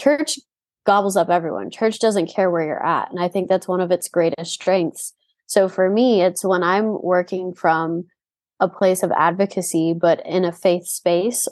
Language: English